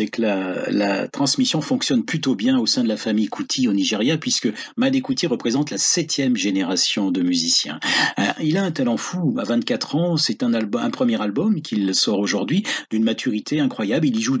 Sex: male